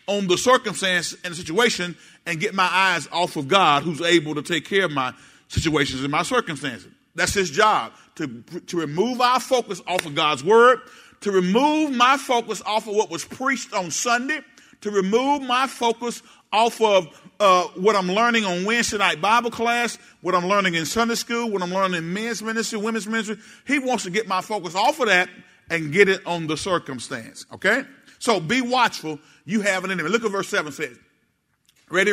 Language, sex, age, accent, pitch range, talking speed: English, male, 40-59, American, 180-235 Hz, 195 wpm